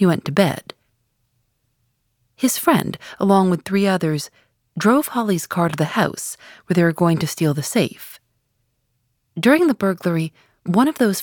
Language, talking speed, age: English, 160 wpm, 40-59